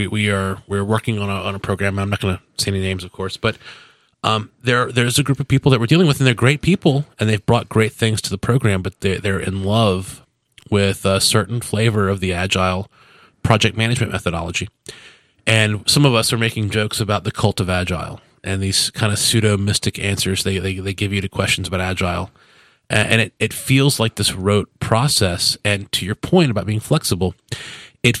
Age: 30-49